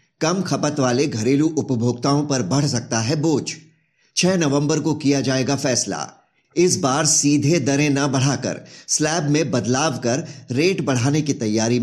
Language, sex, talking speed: Hindi, male, 150 wpm